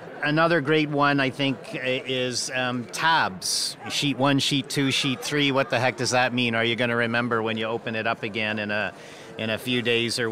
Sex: male